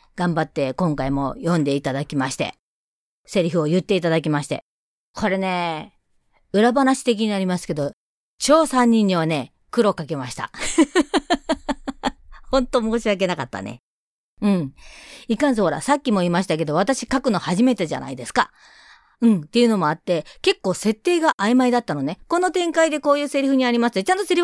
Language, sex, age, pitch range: Japanese, female, 40-59, 180-280 Hz